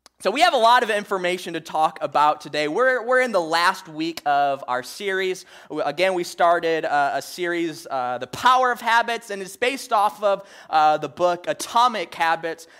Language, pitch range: English, 160-225 Hz